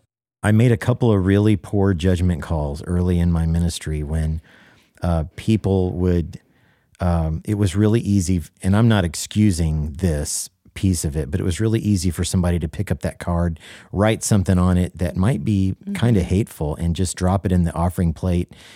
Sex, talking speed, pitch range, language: male, 190 wpm, 85-100 Hz, English